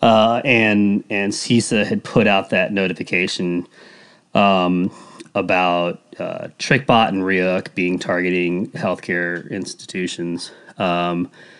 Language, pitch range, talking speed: English, 90-125 Hz, 105 wpm